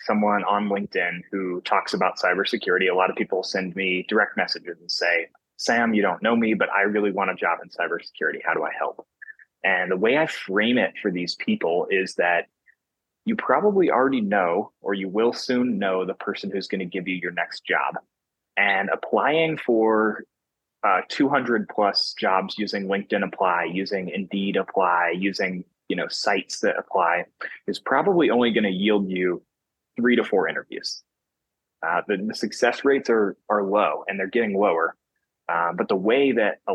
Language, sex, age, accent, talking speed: English, male, 20-39, American, 185 wpm